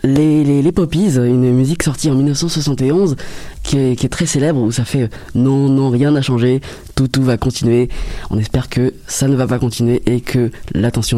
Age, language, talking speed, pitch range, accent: 20-39, French, 210 wpm, 120-145 Hz, French